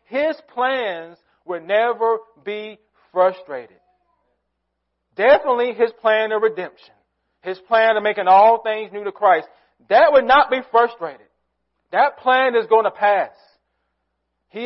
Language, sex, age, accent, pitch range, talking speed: English, male, 40-59, American, 165-235 Hz, 130 wpm